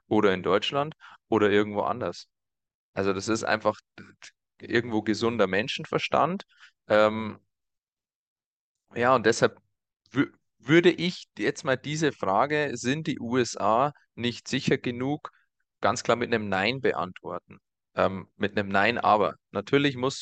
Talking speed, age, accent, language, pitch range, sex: 125 wpm, 30-49, German, German, 100-125 Hz, male